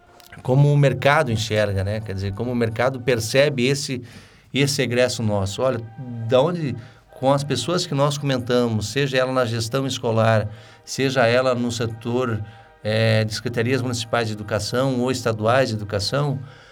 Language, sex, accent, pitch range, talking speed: Portuguese, male, Brazilian, 110-135 Hz, 155 wpm